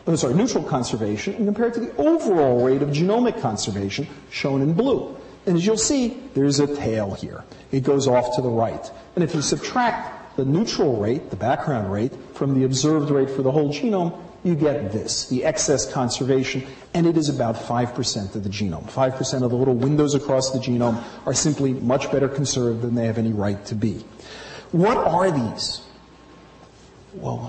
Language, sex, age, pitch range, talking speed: English, male, 40-59, 125-170 Hz, 190 wpm